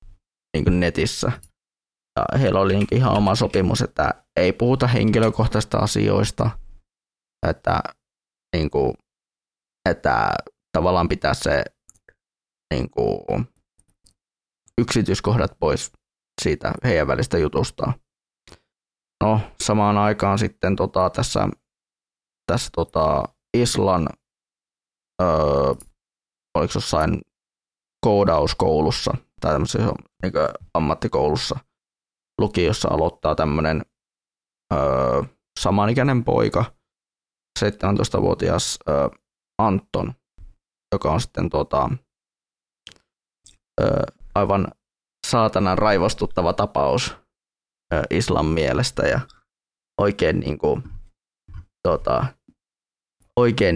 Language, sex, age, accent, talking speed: Finnish, male, 20-39, native, 80 wpm